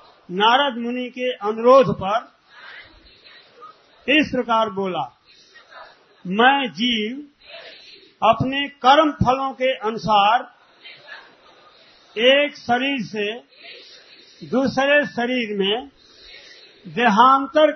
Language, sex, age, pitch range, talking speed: Hindi, male, 50-69, 220-280 Hz, 75 wpm